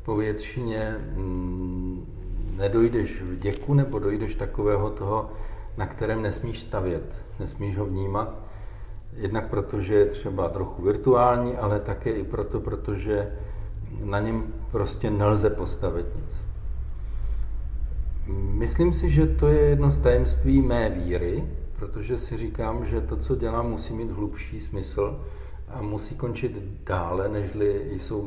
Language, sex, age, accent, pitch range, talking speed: Czech, male, 50-69, native, 95-115 Hz, 125 wpm